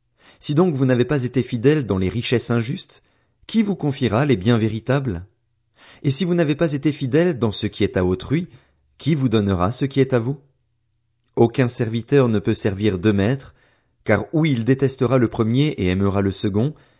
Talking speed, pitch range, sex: 195 wpm, 105-140 Hz, male